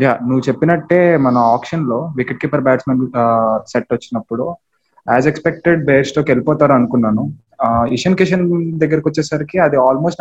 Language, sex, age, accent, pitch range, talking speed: Telugu, male, 20-39, native, 120-150 Hz, 135 wpm